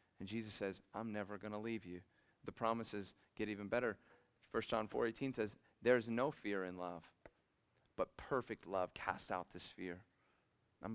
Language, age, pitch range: English, 40-59, 100-120 Hz